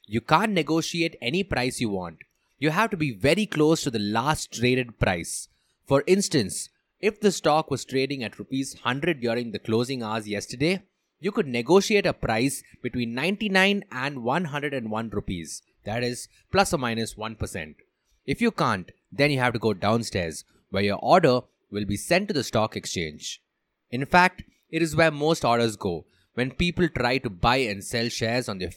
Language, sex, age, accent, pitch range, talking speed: English, male, 20-39, Indian, 110-155 Hz, 180 wpm